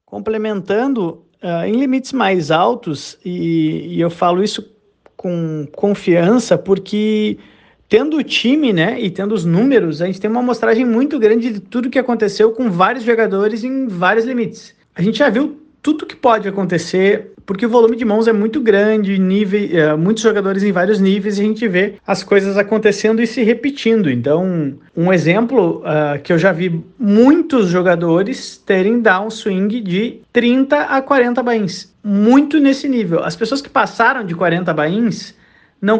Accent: Brazilian